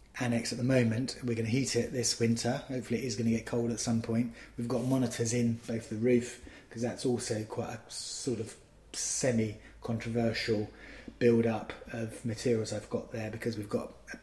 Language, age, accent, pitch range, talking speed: English, 20-39, British, 110-120 Hz, 195 wpm